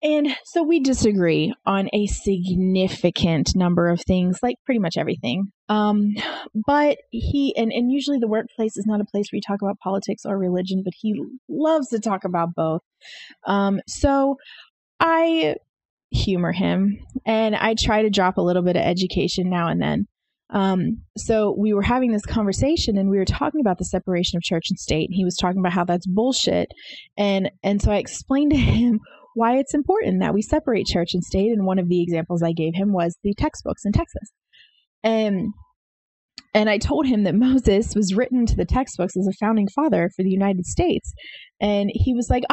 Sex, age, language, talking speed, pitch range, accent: female, 20-39, English, 195 wpm, 185-245 Hz, American